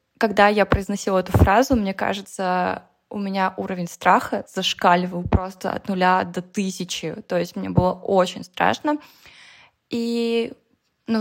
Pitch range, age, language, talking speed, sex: 180-215 Hz, 20-39, Russian, 135 wpm, female